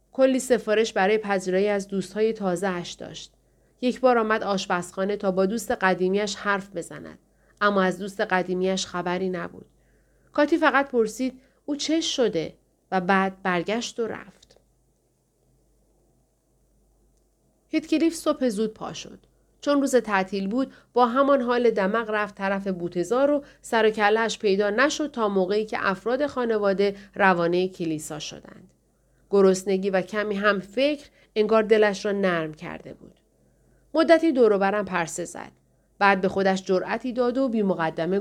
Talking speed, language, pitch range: 135 wpm, Persian, 190-255 Hz